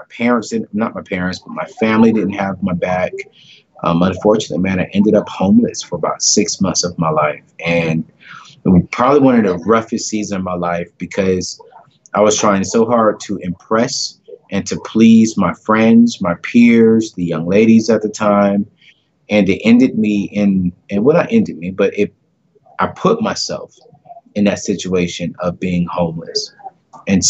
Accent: American